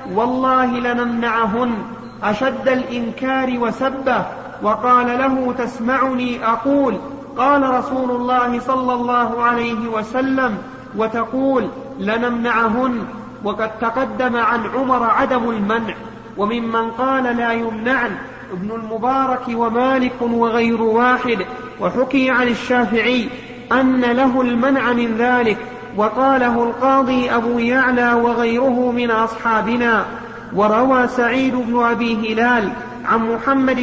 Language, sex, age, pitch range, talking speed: Arabic, male, 40-59, 235-255 Hz, 100 wpm